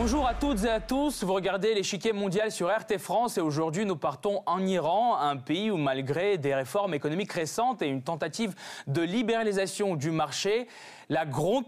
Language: French